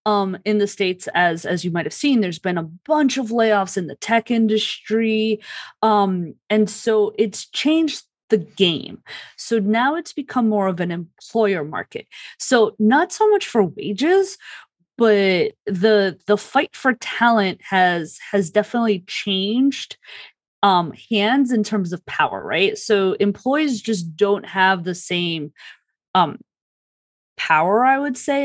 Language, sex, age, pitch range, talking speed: English, female, 20-39, 190-275 Hz, 150 wpm